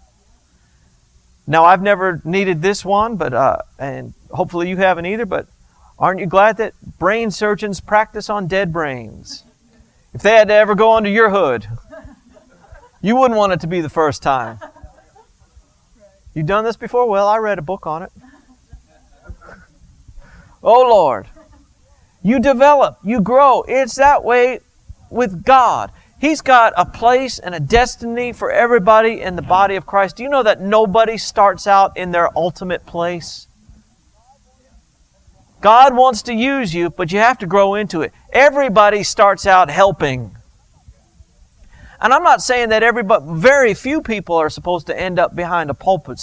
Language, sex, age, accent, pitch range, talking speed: English, male, 50-69, American, 175-235 Hz, 155 wpm